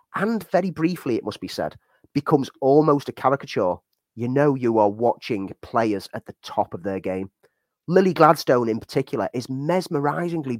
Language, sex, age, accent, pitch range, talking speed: English, male, 30-49, British, 120-160 Hz, 165 wpm